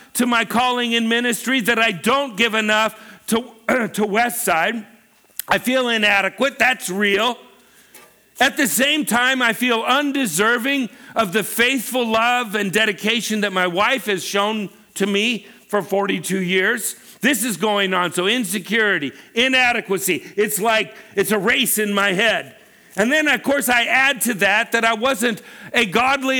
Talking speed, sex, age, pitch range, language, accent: 155 wpm, male, 50-69, 205-245 Hz, English, American